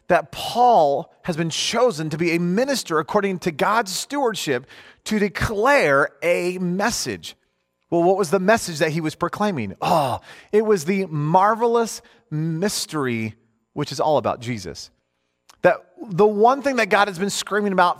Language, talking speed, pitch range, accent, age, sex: English, 155 wpm, 155-210 Hz, American, 30-49, male